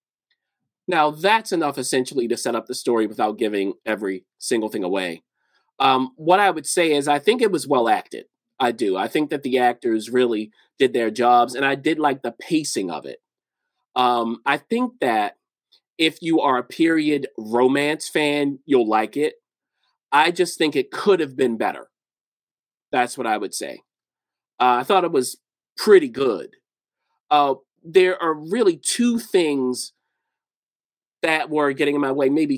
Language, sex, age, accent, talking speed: English, male, 30-49, American, 170 wpm